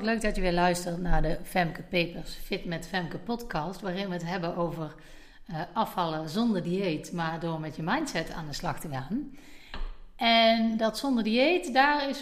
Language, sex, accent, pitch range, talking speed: Dutch, female, Dutch, 170-230 Hz, 180 wpm